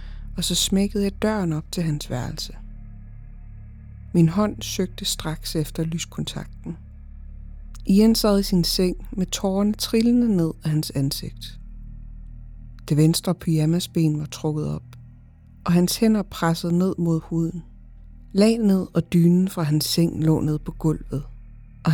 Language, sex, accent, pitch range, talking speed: Danish, female, native, 125-185 Hz, 140 wpm